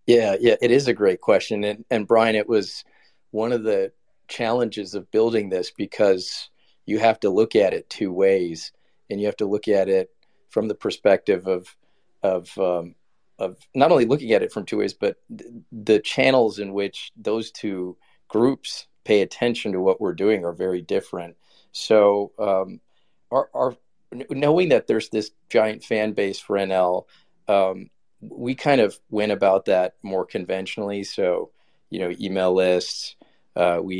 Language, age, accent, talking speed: English, 40-59, American, 175 wpm